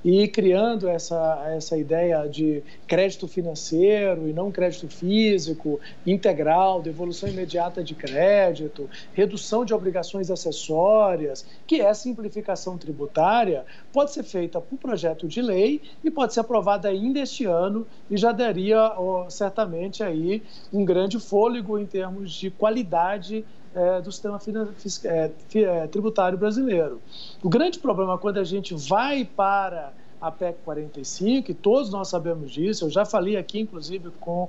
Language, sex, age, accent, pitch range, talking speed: Portuguese, male, 50-69, Brazilian, 170-220 Hz, 130 wpm